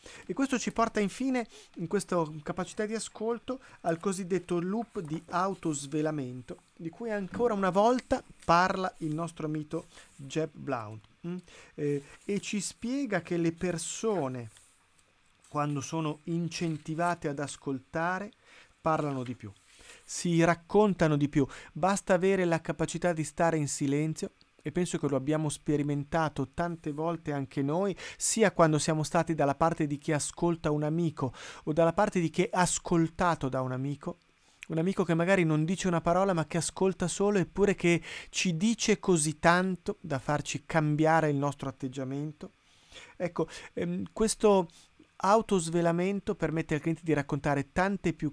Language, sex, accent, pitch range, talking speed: Italian, male, native, 150-185 Hz, 150 wpm